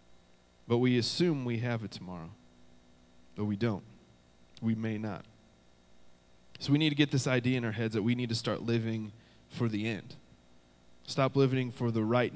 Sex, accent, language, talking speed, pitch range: male, American, English, 180 wpm, 95-130 Hz